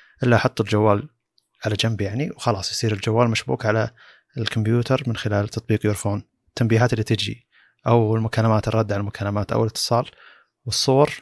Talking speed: 150 wpm